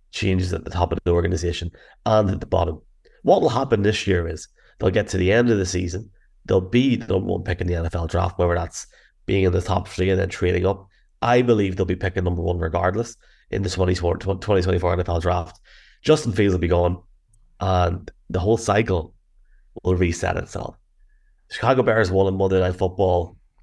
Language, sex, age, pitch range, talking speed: English, male, 30-49, 85-95 Hz, 195 wpm